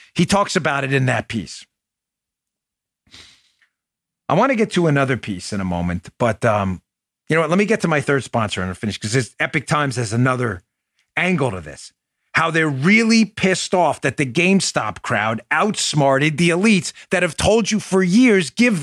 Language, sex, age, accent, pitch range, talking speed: English, male, 40-59, American, 155-220 Hz, 190 wpm